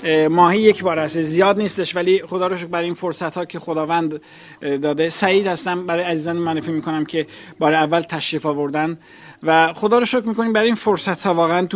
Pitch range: 165-210 Hz